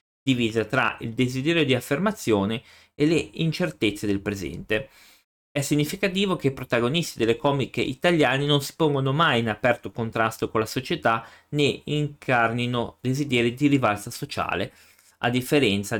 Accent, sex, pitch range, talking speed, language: native, male, 110-145 Hz, 140 wpm, Italian